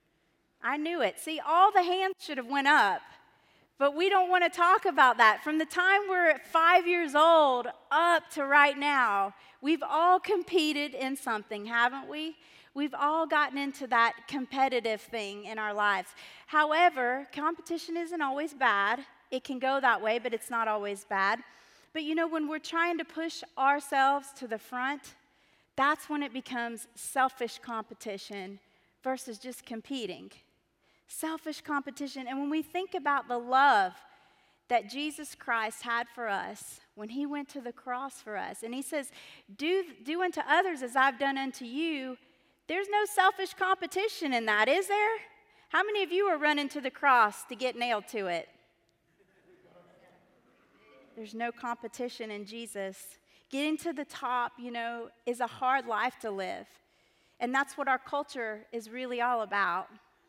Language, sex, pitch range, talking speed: English, female, 235-320 Hz, 165 wpm